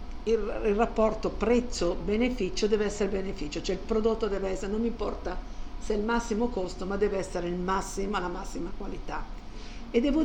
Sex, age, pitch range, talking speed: female, 50-69, 190-235 Hz, 175 wpm